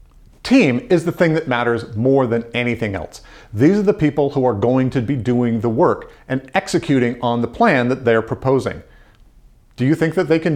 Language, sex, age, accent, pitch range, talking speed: English, male, 40-59, American, 120-165 Hz, 205 wpm